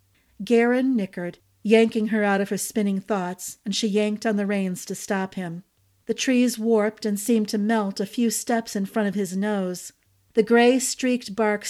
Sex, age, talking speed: female, 50-69, 185 wpm